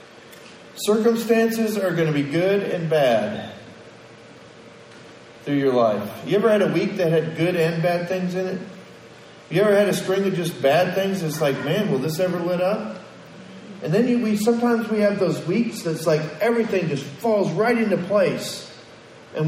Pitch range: 155-205 Hz